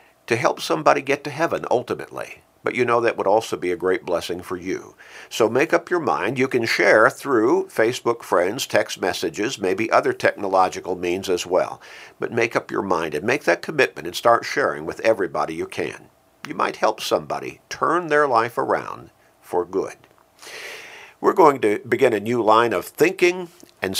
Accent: American